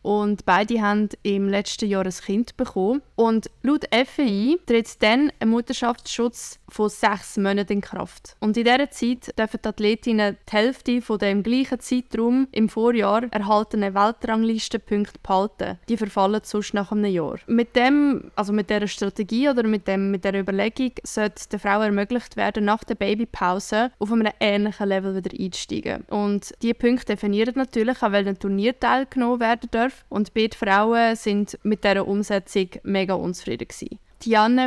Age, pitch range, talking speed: 20-39, 205-235 Hz, 160 wpm